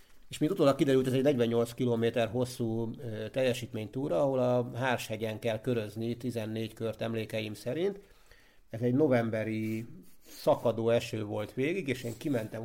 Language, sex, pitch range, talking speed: Hungarian, male, 110-130 Hz, 140 wpm